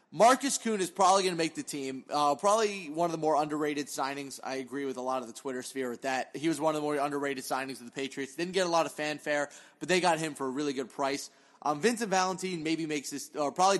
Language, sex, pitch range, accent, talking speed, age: English, male, 140-185 Hz, American, 270 wpm, 30-49